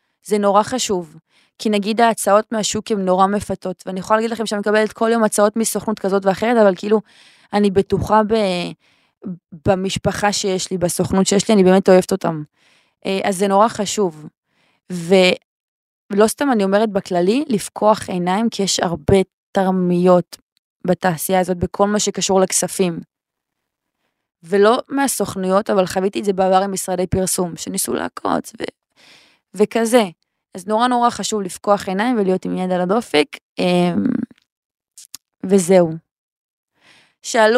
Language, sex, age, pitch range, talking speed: Hebrew, female, 20-39, 190-225 Hz, 135 wpm